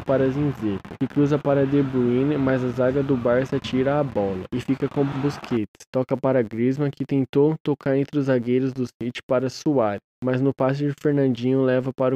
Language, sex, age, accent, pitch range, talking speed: Portuguese, male, 10-29, Brazilian, 125-145 Hz, 195 wpm